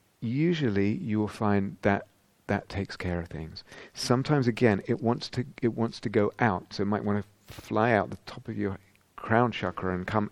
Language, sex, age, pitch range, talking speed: English, male, 40-59, 95-120 Hz, 210 wpm